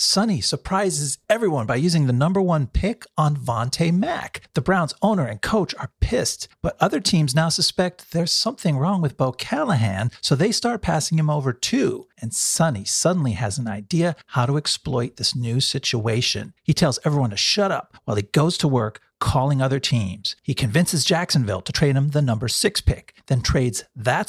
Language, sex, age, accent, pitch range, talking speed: English, male, 40-59, American, 125-170 Hz, 190 wpm